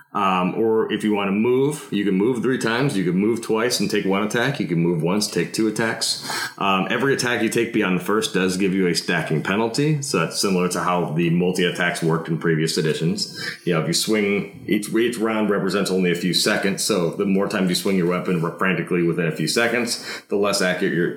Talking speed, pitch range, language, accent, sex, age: 230 wpm, 85-110 Hz, English, American, male, 30-49